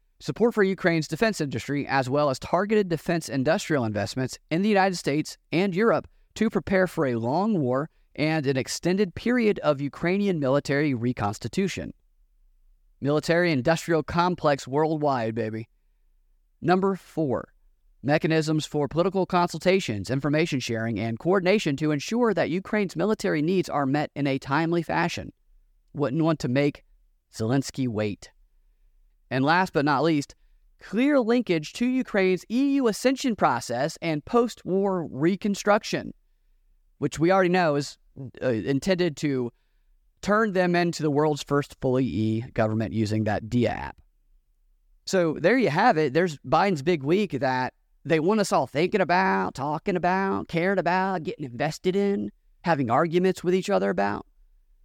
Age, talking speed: 30-49, 140 wpm